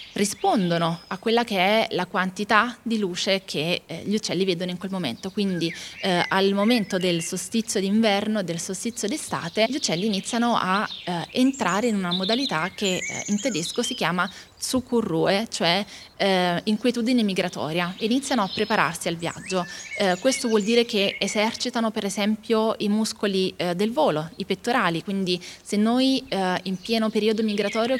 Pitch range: 185-230 Hz